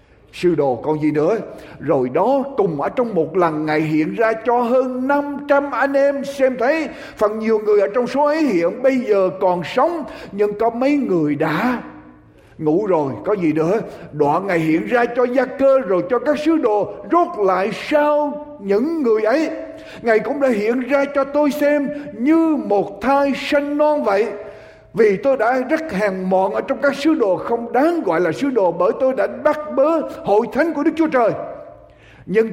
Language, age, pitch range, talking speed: Vietnamese, 60-79, 190-285 Hz, 195 wpm